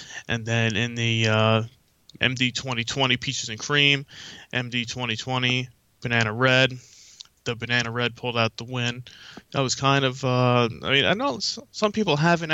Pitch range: 115-130 Hz